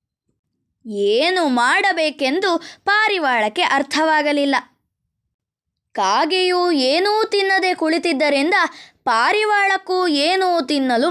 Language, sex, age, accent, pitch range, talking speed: Kannada, female, 20-39, native, 295-390 Hz, 60 wpm